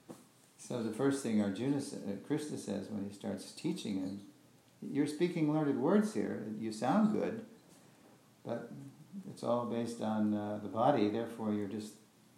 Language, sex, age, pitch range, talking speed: English, male, 50-69, 105-120 Hz, 150 wpm